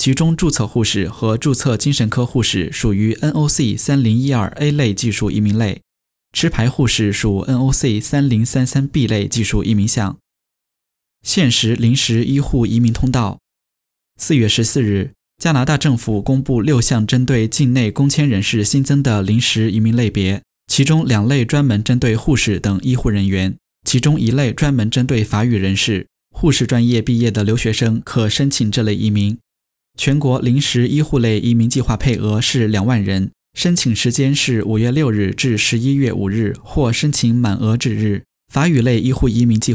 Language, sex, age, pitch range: Chinese, male, 10-29, 105-135 Hz